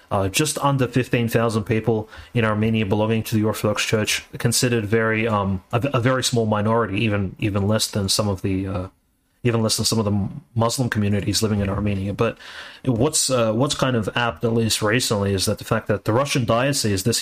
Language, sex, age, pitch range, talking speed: English, male, 30-49, 105-120 Hz, 200 wpm